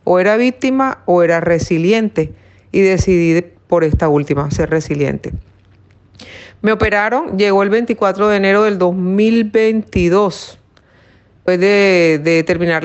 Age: 40-59